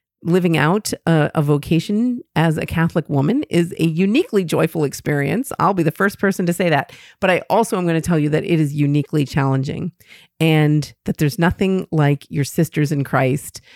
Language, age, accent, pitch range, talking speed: English, 40-59, American, 150-190 Hz, 190 wpm